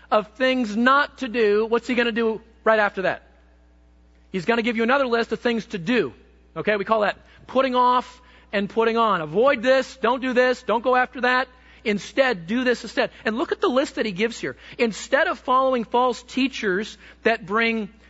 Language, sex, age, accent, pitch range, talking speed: English, male, 40-59, American, 210-250 Hz, 205 wpm